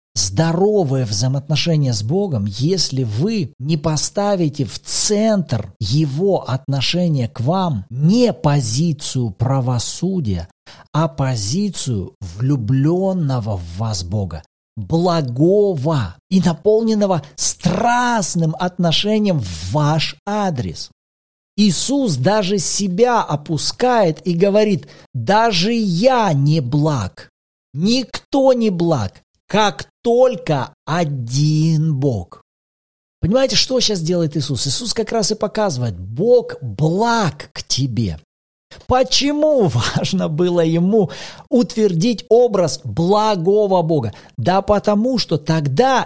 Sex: male